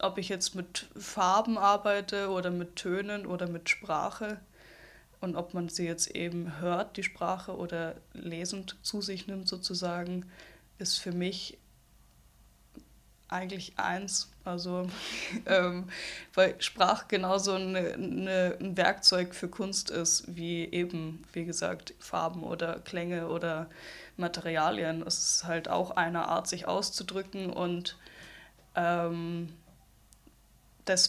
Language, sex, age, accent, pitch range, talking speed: German, female, 10-29, German, 175-195 Hz, 120 wpm